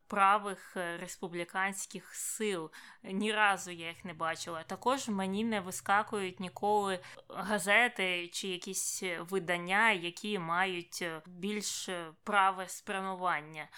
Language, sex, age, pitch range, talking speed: Ukrainian, female, 20-39, 180-215 Hz, 100 wpm